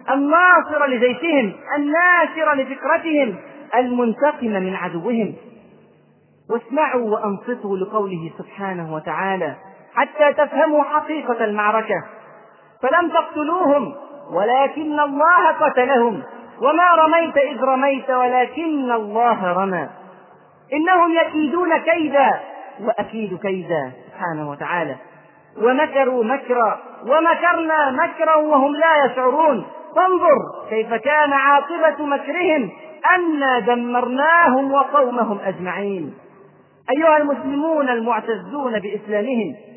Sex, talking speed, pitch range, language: male, 85 wpm, 235-310 Hz, Arabic